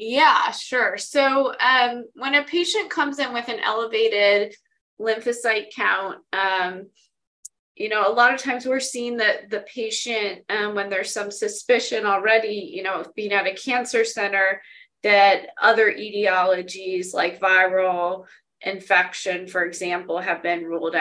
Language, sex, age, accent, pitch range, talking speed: English, female, 20-39, American, 185-235 Hz, 145 wpm